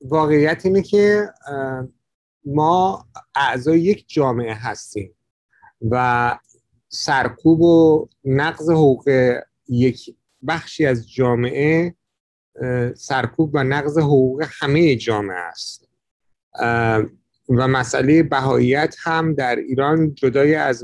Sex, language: male, Persian